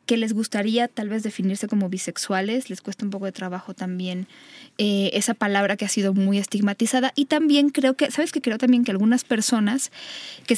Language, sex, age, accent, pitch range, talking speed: Spanish, female, 10-29, Mexican, 200-245 Hz, 200 wpm